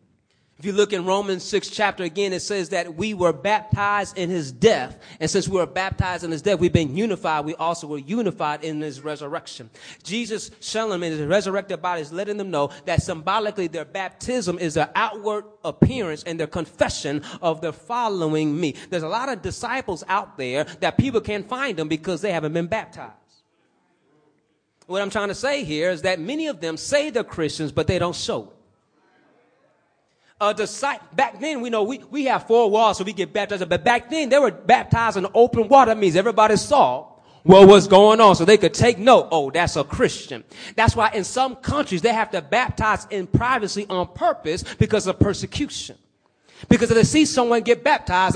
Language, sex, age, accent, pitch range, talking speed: English, male, 30-49, American, 165-215 Hz, 200 wpm